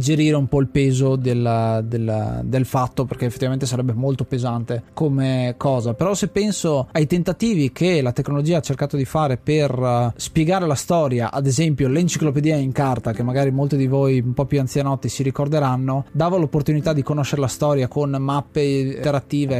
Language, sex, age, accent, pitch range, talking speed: Italian, male, 20-39, native, 130-155 Hz, 170 wpm